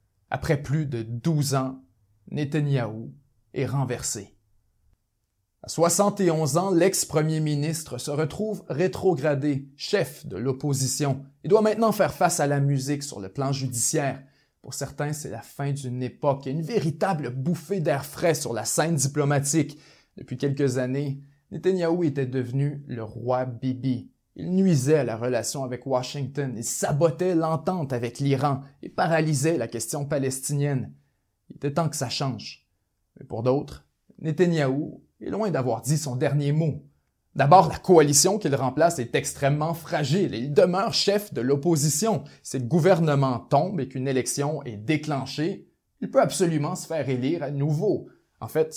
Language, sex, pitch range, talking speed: French, male, 130-160 Hz, 155 wpm